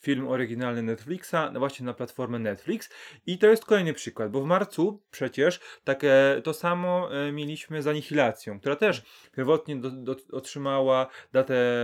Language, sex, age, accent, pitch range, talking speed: Polish, male, 30-49, native, 130-175 Hz, 145 wpm